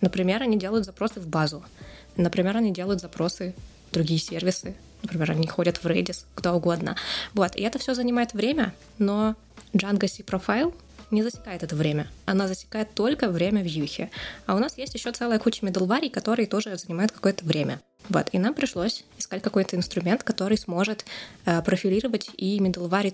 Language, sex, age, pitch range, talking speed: Russian, female, 20-39, 175-220 Hz, 165 wpm